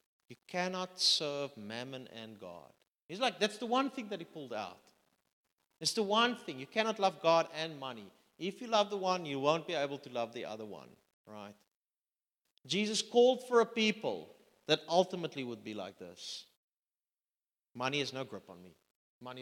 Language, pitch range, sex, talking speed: English, 130-210 Hz, male, 180 wpm